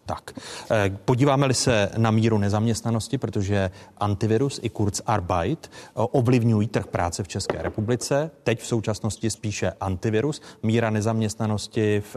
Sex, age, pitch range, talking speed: male, 30-49, 100-115 Hz, 120 wpm